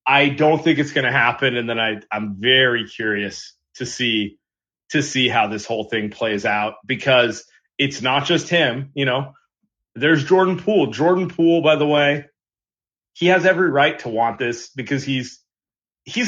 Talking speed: 175 wpm